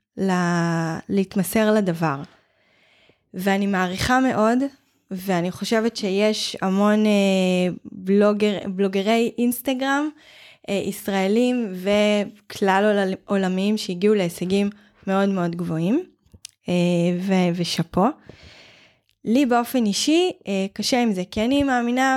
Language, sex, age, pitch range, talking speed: Hebrew, female, 20-39, 185-225 Hz, 100 wpm